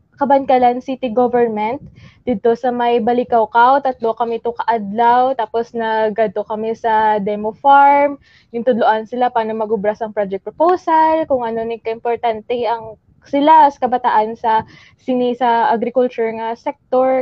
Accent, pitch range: Filipino, 230-275 Hz